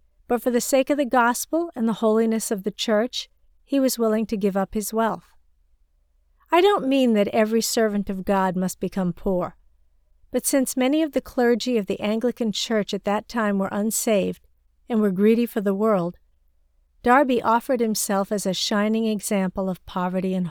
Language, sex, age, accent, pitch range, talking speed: English, female, 50-69, American, 175-225 Hz, 185 wpm